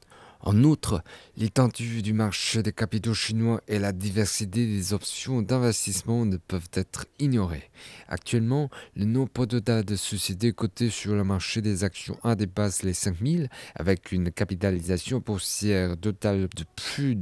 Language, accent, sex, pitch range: French, French, male, 95-115 Hz